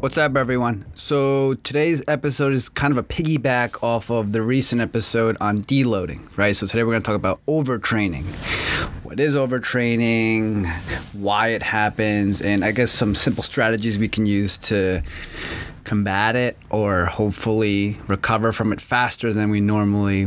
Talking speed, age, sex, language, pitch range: 160 wpm, 30-49, male, English, 105-125 Hz